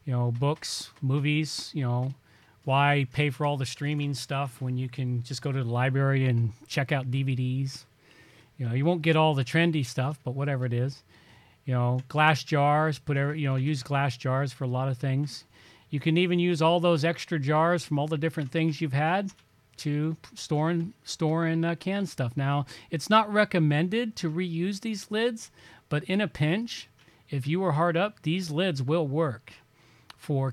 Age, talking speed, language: 40-59, 195 wpm, English